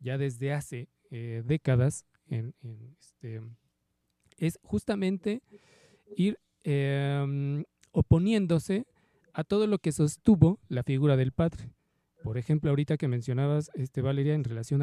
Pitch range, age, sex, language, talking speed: 135-185 Hz, 40-59, male, Spanish, 125 wpm